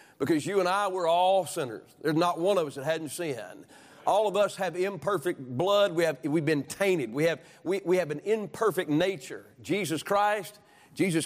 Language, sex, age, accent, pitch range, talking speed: English, male, 40-59, American, 130-180 Hz, 180 wpm